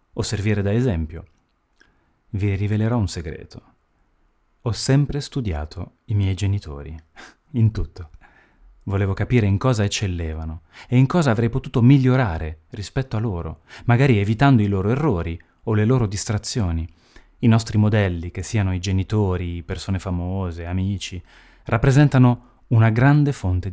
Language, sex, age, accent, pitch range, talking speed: Italian, male, 30-49, native, 85-115 Hz, 135 wpm